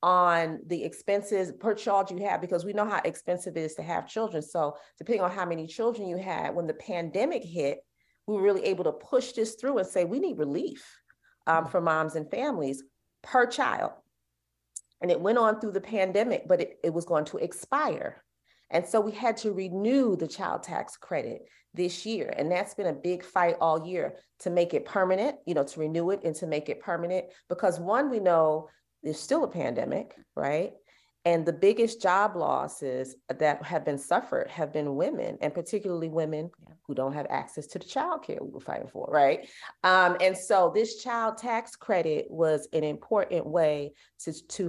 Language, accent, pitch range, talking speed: English, American, 155-205 Hz, 195 wpm